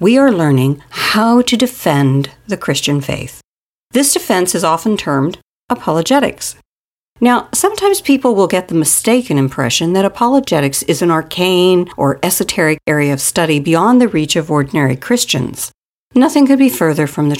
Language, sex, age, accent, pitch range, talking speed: English, female, 50-69, American, 155-220 Hz, 155 wpm